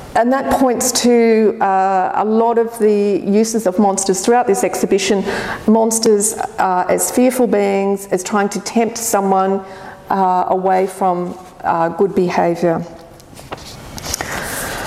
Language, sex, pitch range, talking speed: English, female, 195-235 Hz, 125 wpm